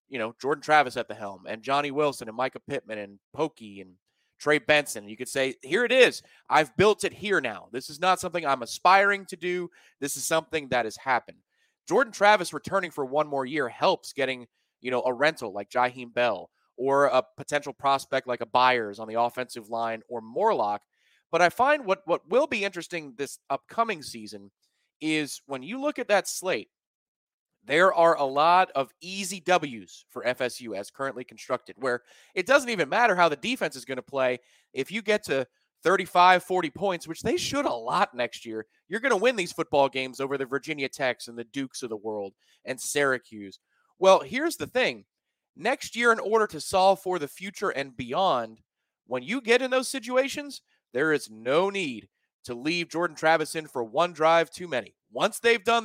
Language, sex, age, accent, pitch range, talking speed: English, male, 30-49, American, 125-190 Hz, 200 wpm